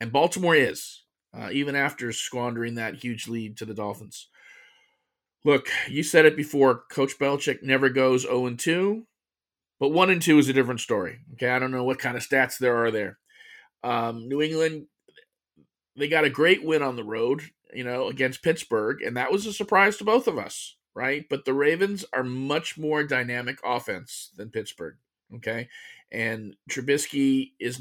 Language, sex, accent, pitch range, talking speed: English, male, American, 120-140 Hz, 180 wpm